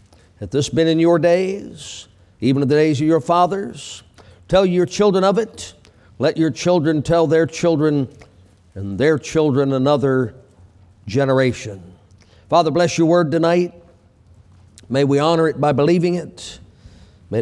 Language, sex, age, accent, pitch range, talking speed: English, male, 50-69, American, 105-165 Hz, 145 wpm